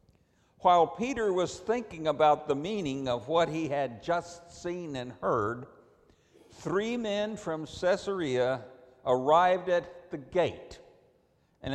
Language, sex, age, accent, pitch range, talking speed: English, male, 60-79, American, 130-185 Hz, 125 wpm